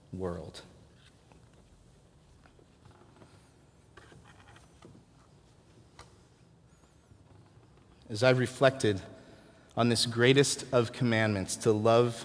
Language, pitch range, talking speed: English, 100-125 Hz, 55 wpm